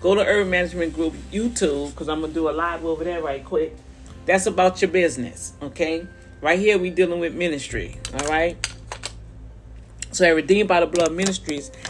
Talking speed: 185 wpm